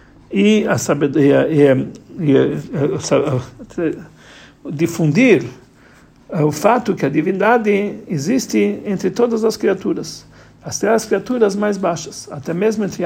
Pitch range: 155-210 Hz